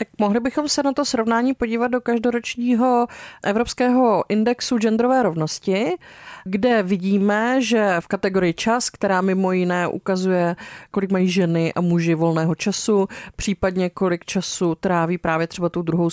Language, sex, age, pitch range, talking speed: Czech, female, 30-49, 175-210 Hz, 145 wpm